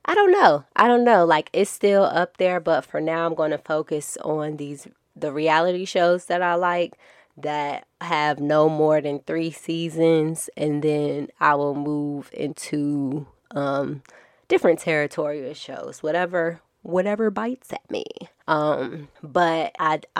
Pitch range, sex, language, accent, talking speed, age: 150-175 Hz, female, English, American, 150 wpm, 20-39